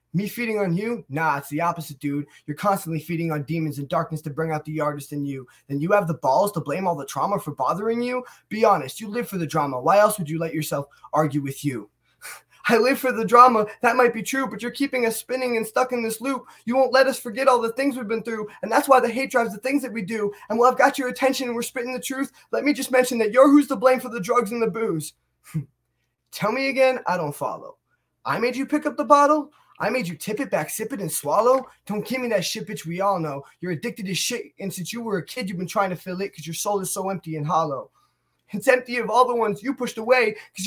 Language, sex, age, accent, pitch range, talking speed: English, male, 20-39, American, 195-265 Hz, 275 wpm